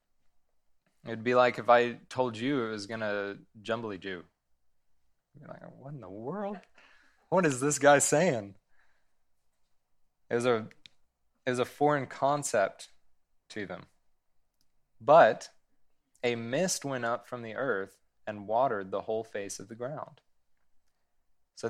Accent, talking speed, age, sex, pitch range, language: American, 140 wpm, 20-39, male, 100-130 Hz, English